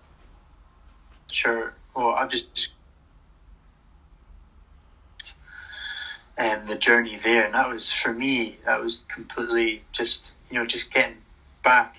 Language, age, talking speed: English, 20-39, 110 wpm